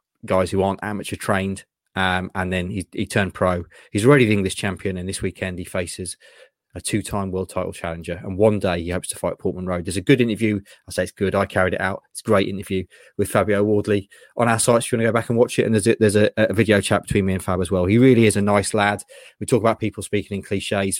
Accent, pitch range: British, 95-125 Hz